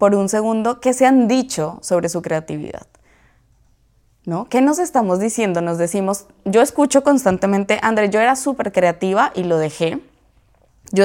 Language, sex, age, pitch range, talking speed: Spanish, female, 20-39, 180-240 Hz, 155 wpm